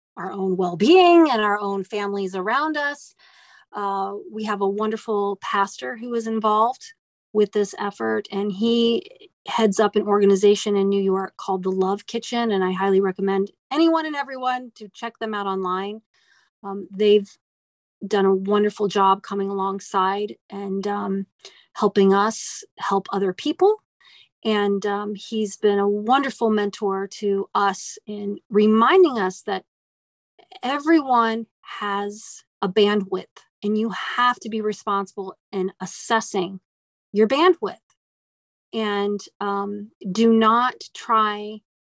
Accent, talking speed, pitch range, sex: American, 135 wpm, 195-225 Hz, female